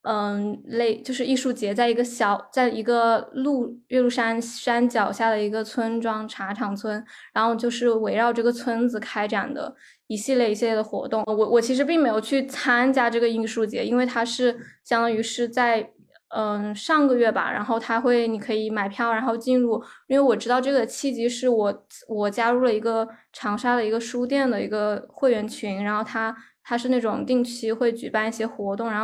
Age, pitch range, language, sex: 10-29, 215-245 Hz, Chinese, female